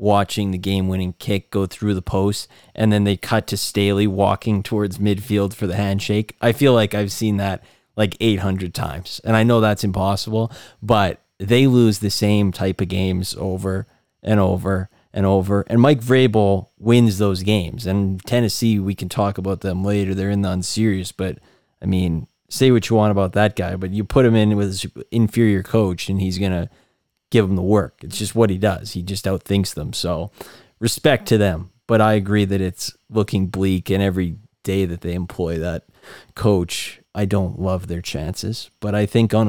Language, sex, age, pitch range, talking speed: English, male, 20-39, 95-110 Hz, 195 wpm